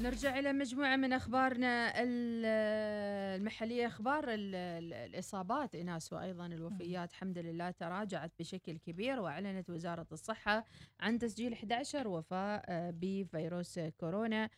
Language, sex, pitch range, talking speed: Arabic, female, 175-230 Hz, 105 wpm